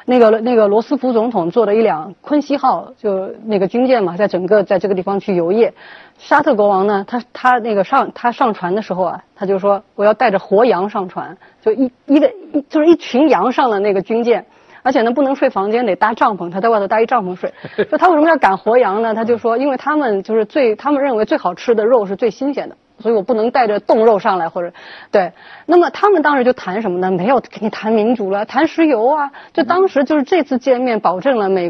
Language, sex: Chinese, female